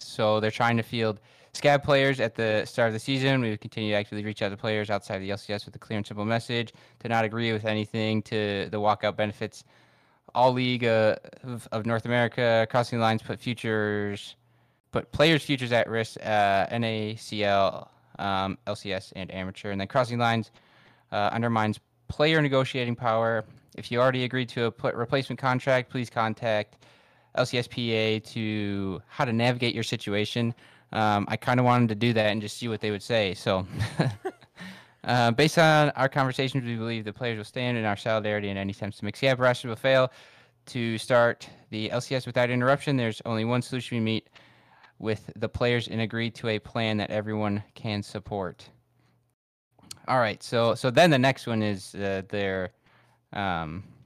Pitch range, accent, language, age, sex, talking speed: 105-125 Hz, American, English, 10-29, male, 180 wpm